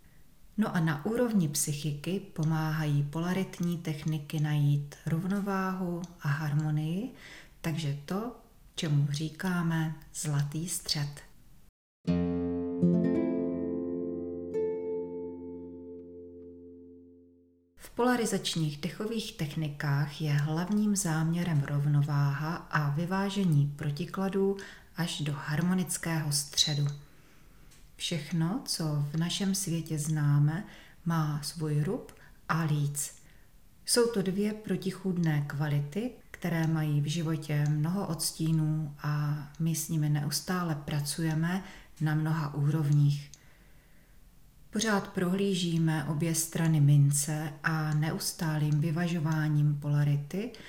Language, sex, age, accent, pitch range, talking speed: Czech, female, 30-49, native, 145-175 Hz, 85 wpm